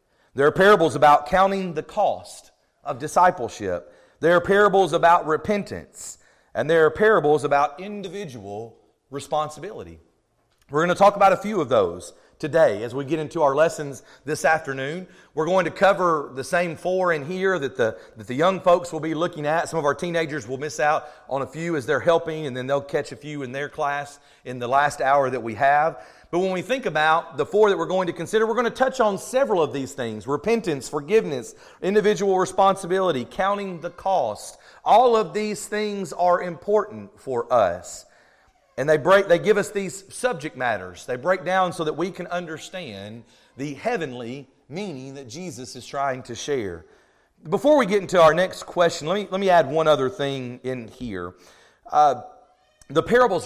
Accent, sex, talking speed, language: American, male, 190 wpm, English